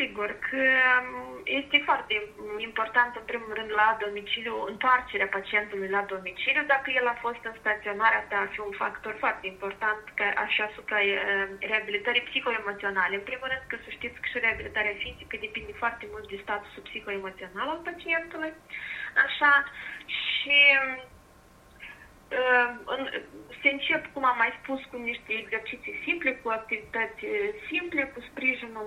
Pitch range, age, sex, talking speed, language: 210-270 Hz, 20-39, female, 135 wpm, Romanian